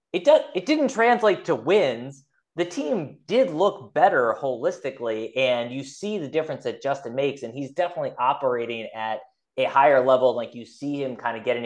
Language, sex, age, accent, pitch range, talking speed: English, male, 20-39, American, 115-175 Hz, 185 wpm